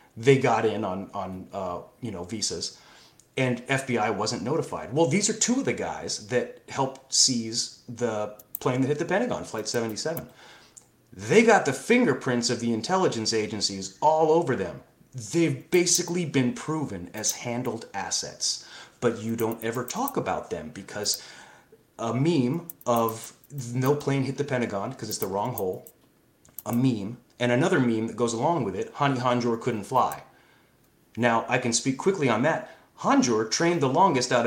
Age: 30-49